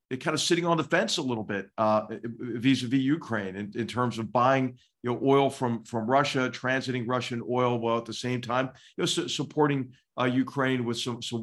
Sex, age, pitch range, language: male, 50-69, 115-140 Hz, English